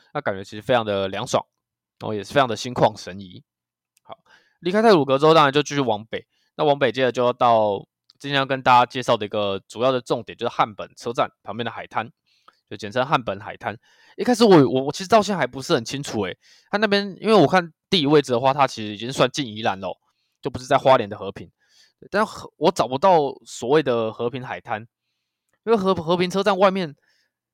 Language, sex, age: Chinese, male, 20-39